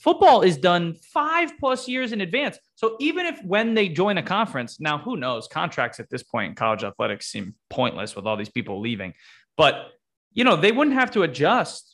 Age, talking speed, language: 20-39, 200 wpm, English